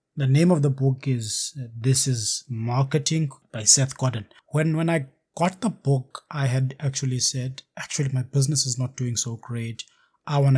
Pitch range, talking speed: 120-140 Hz, 185 wpm